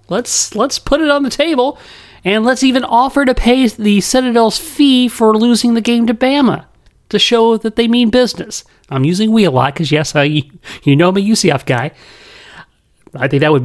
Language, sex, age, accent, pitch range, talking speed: English, male, 40-59, American, 150-220 Hz, 200 wpm